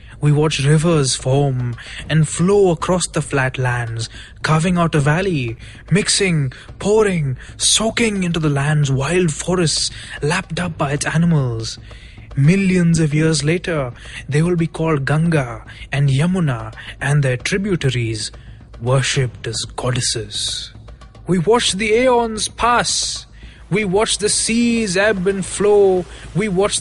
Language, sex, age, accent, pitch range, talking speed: English, male, 20-39, Indian, 130-185 Hz, 130 wpm